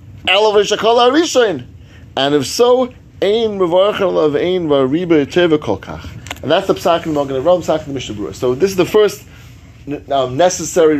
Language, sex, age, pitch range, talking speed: English, male, 30-49, 115-190 Hz, 100 wpm